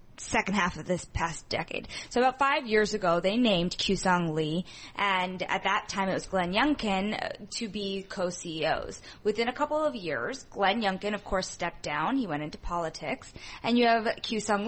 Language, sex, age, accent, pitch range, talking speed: English, female, 20-39, American, 190-245 Hz, 190 wpm